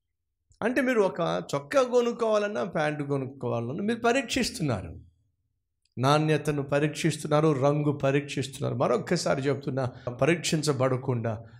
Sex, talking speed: male, 85 wpm